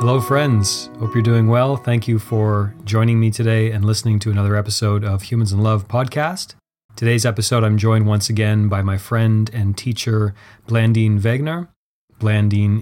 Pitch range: 105-115 Hz